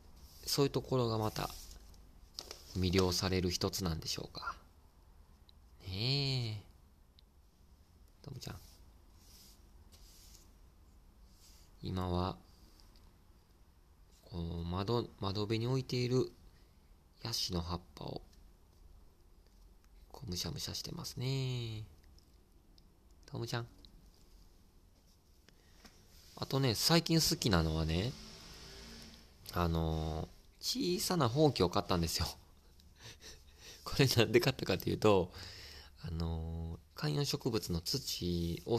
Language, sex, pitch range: Japanese, male, 80-100 Hz